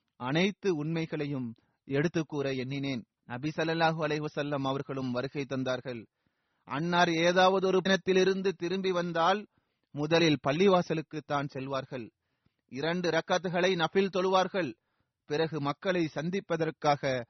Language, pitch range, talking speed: Tamil, 135-190 Hz, 90 wpm